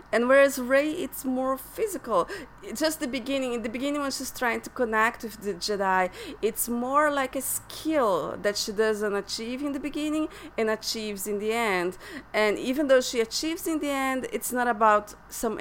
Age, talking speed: 30-49, 190 wpm